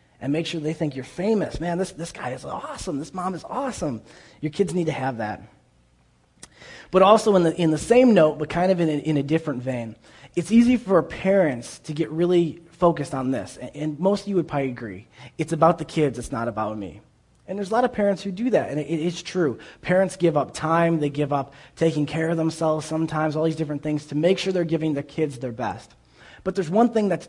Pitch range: 120-165 Hz